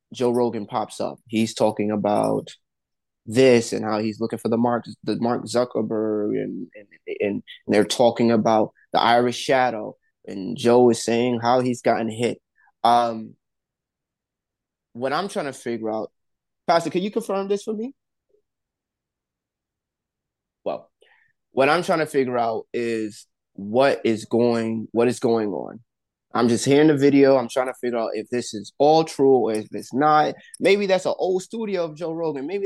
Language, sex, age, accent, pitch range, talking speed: English, male, 20-39, American, 110-140 Hz, 170 wpm